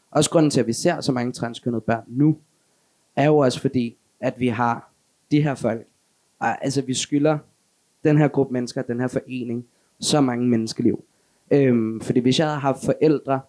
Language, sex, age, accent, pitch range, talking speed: Danish, male, 20-39, native, 120-150 Hz, 180 wpm